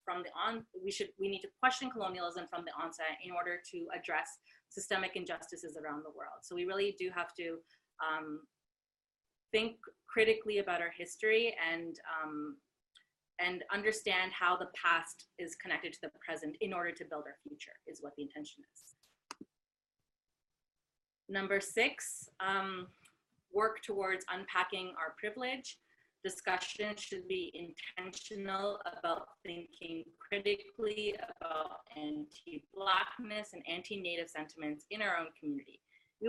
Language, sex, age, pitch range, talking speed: English, female, 30-49, 165-210 Hz, 135 wpm